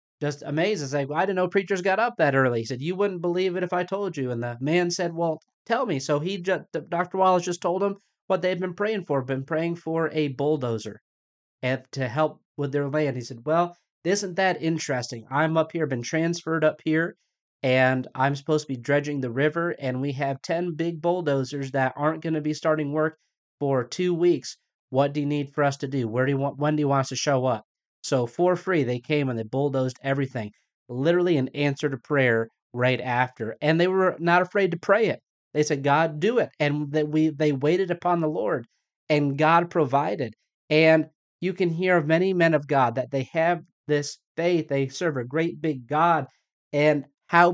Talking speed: 215 wpm